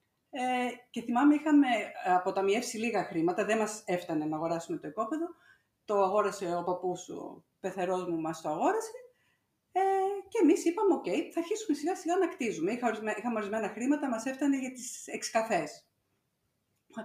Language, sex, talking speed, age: Greek, female, 160 wpm, 50-69